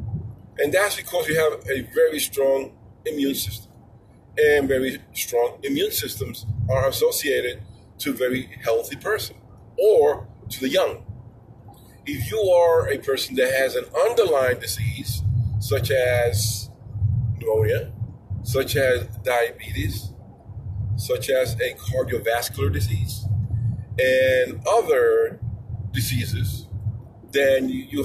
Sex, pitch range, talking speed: male, 110-175 Hz, 110 wpm